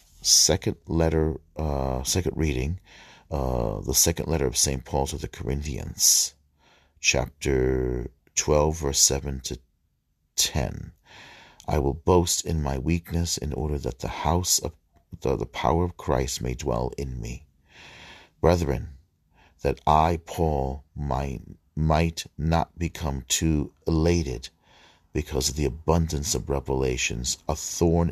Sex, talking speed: male, 125 wpm